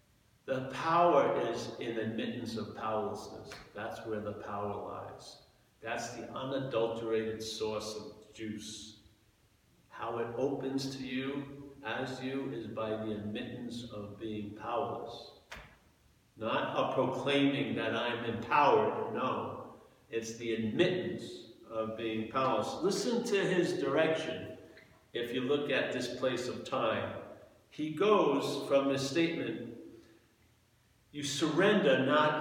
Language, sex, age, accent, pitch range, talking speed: English, male, 50-69, American, 110-180 Hz, 120 wpm